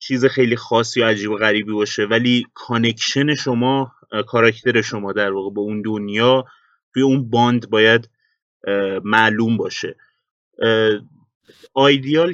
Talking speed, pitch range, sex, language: 120 wpm, 110-130 Hz, male, Persian